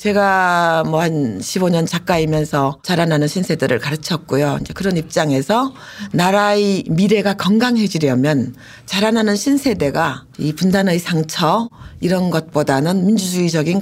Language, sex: Korean, female